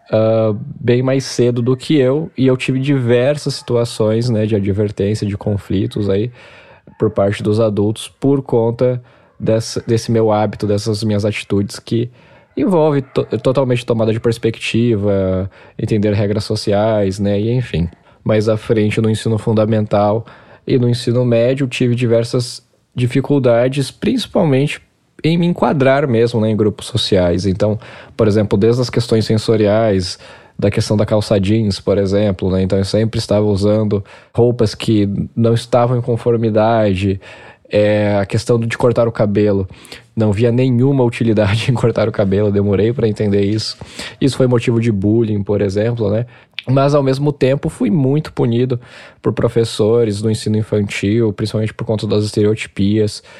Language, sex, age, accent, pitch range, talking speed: Portuguese, male, 10-29, Brazilian, 105-120 Hz, 150 wpm